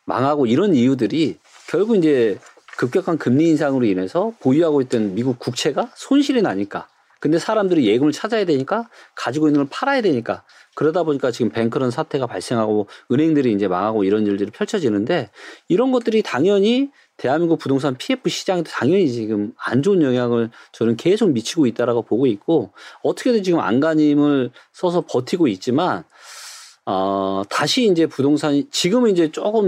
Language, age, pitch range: Korean, 40-59, 125-210 Hz